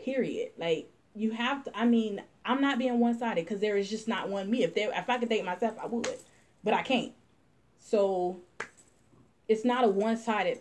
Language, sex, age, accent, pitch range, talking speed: English, female, 20-39, American, 180-235 Hz, 200 wpm